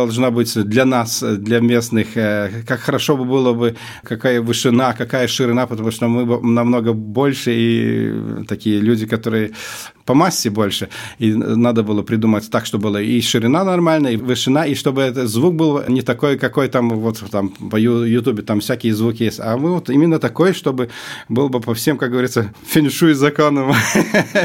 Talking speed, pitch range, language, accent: 175 wpm, 115-145 Hz, Russian, native